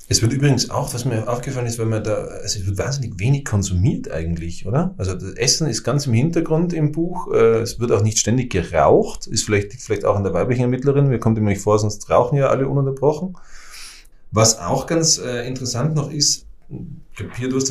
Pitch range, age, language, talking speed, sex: 105-135 Hz, 30-49, German, 210 wpm, male